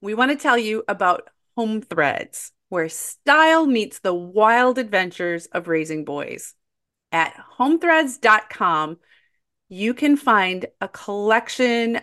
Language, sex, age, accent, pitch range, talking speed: English, female, 30-49, American, 180-250 Hz, 120 wpm